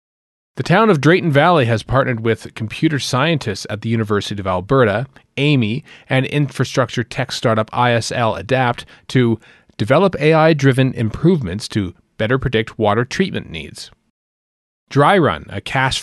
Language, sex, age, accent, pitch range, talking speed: English, male, 30-49, American, 110-140 Hz, 130 wpm